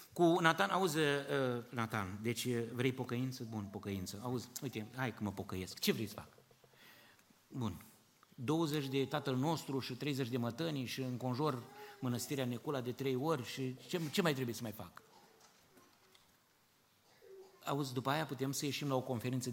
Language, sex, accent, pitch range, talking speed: Romanian, male, native, 115-145 Hz, 160 wpm